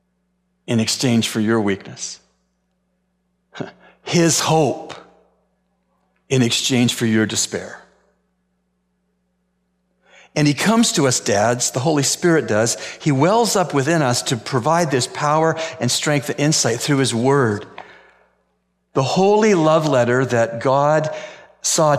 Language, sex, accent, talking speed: English, male, American, 125 wpm